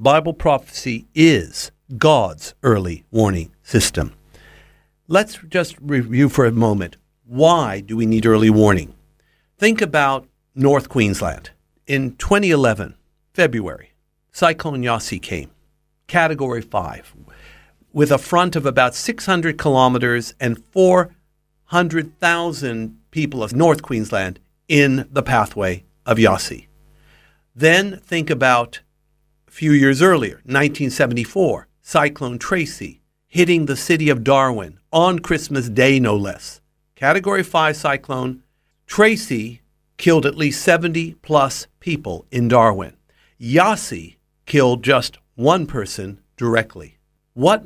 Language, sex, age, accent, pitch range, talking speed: English, male, 50-69, American, 120-165 Hz, 110 wpm